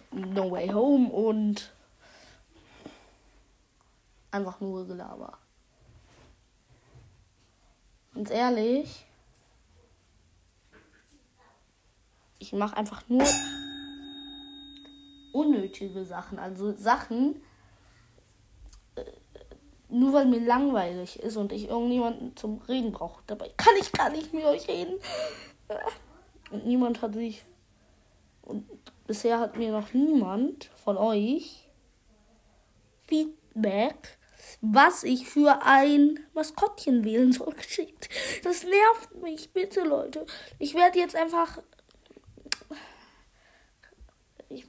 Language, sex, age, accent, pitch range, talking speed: German, female, 20-39, German, 210-295 Hz, 90 wpm